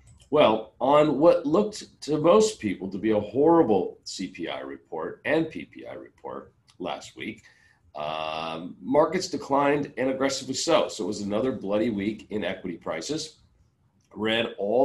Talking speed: 140 wpm